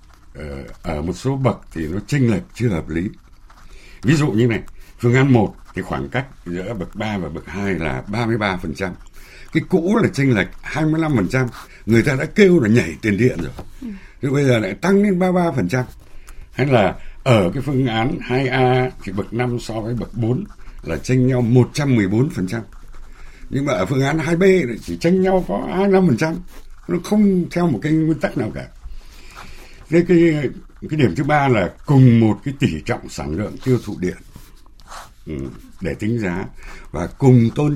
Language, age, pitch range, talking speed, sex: Vietnamese, 60-79, 90-140 Hz, 180 wpm, male